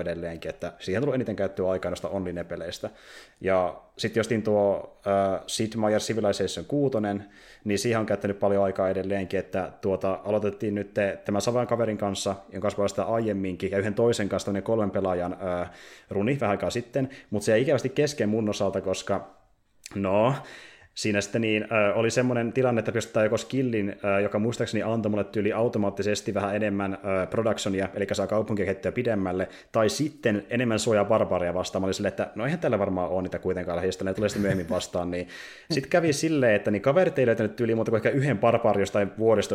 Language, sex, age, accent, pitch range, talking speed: Finnish, male, 20-39, native, 95-115 Hz, 180 wpm